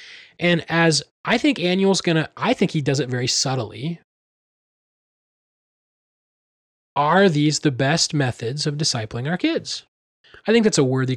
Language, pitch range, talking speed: English, 130-160 Hz, 145 wpm